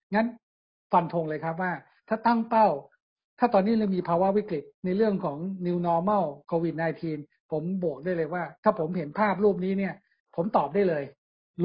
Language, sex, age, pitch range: Thai, male, 60-79, 155-190 Hz